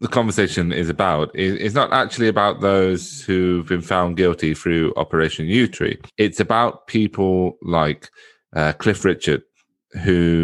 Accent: British